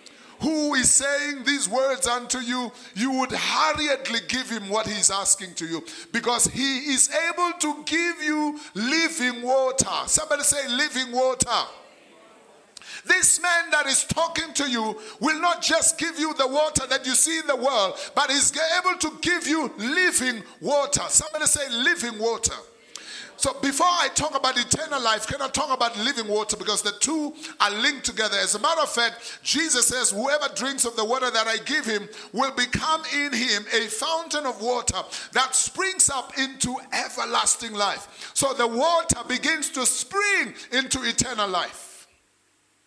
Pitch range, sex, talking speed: 235-300 Hz, male, 170 wpm